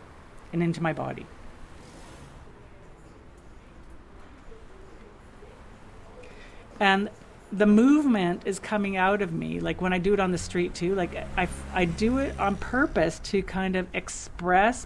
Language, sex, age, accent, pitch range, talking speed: English, female, 50-69, American, 160-200 Hz, 130 wpm